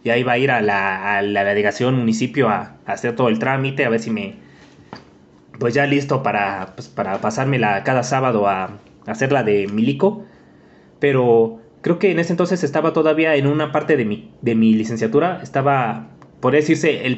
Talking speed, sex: 195 wpm, male